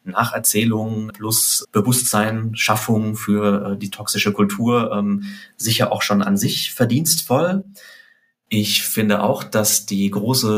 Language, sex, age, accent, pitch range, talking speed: German, male, 30-49, German, 100-125 Hz, 125 wpm